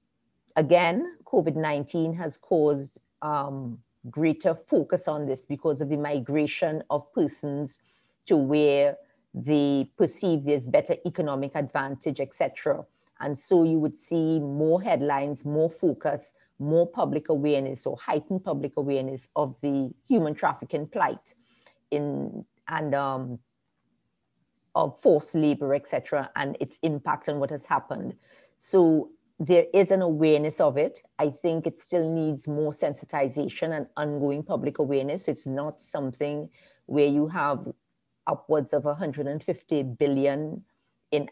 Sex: female